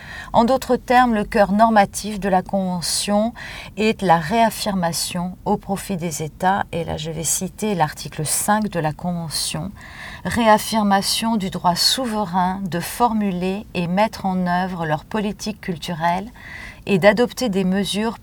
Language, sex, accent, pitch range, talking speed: English, female, French, 175-220 Hz, 140 wpm